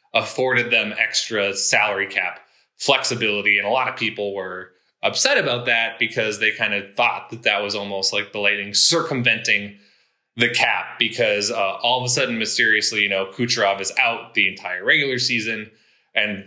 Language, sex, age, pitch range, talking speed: English, male, 20-39, 100-125 Hz, 170 wpm